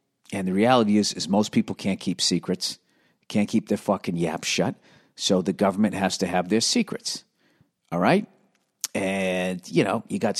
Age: 50-69